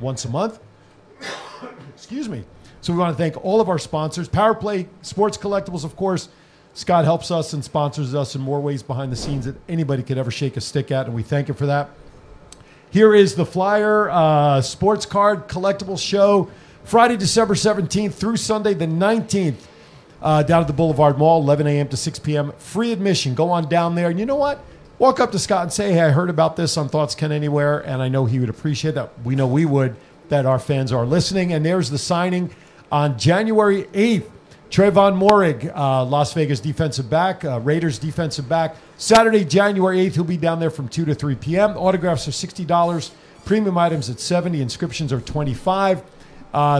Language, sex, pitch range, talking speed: English, male, 140-185 Hz, 195 wpm